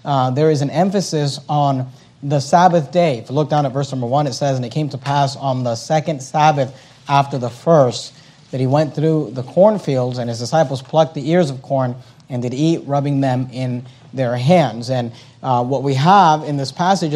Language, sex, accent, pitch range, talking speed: English, male, American, 140-170 Hz, 215 wpm